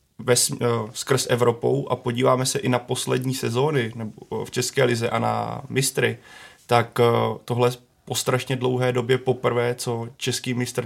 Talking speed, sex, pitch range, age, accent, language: 150 wpm, male, 120-125 Hz, 20-39, native, Czech